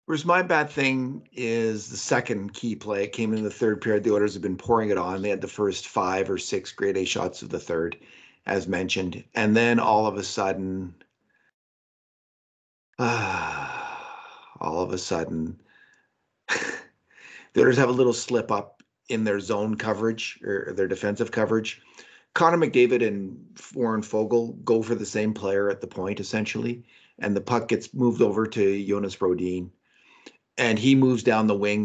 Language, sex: English, male